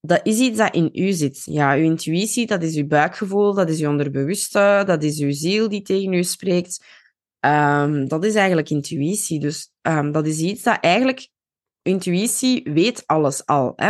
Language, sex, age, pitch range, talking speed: Dutch, female, 20-39, 155-200 Hz, 185 wpm